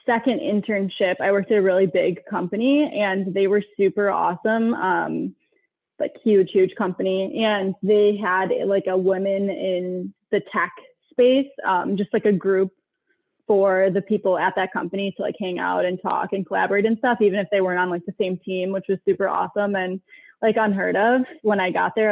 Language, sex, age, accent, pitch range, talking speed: English, female, 20-39, American, 190-215 Hz, 195 wpm